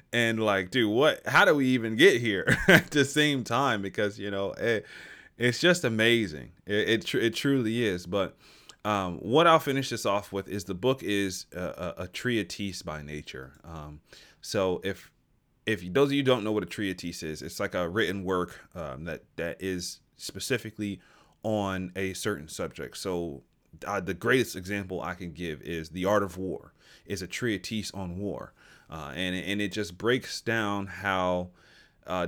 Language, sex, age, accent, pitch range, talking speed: English, male, 30-49, American, 90-115 Hz, 185 wpm